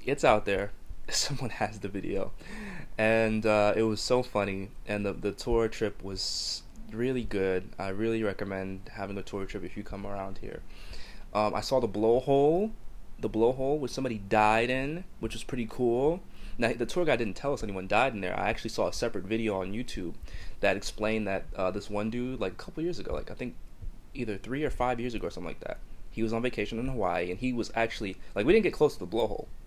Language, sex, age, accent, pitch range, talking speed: English, male, 20-39, American, 100-125 Hz, 225 wpm